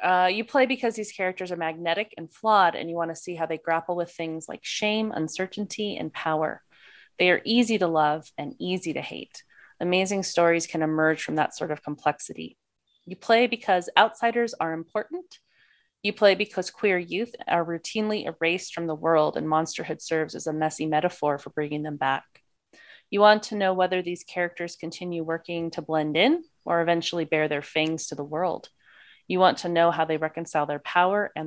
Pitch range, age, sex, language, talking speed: 160-195 Hz, 30-49, female, English, 195 wpm